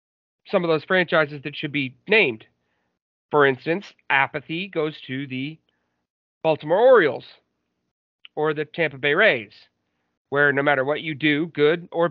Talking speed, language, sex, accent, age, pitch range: 145 wpm, English, male, American, 40-59, 130-180 Hz